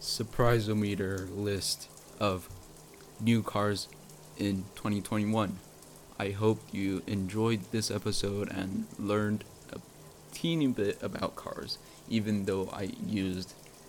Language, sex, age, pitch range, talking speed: English, male, 20-39, 95-110 Hz, 105 wpm